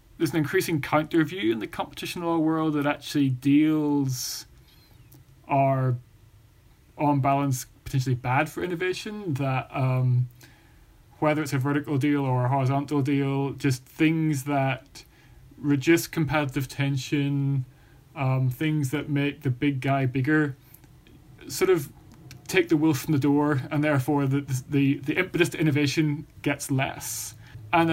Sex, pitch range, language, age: male, 130-150 Hz, English, 20-39